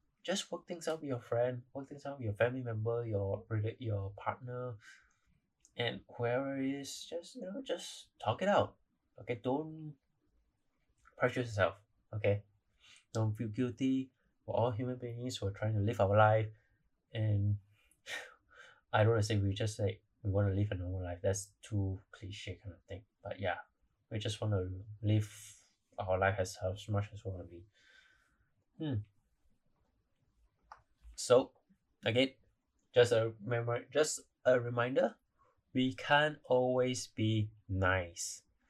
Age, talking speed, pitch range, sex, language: 20-39, 150 wpm, 100-125 Hz, male, English